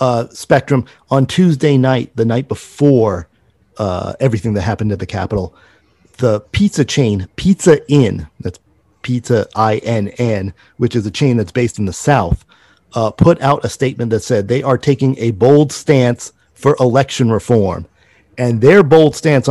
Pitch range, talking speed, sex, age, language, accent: 110-130 Hz, 155 wpm, male, 40-59, English, American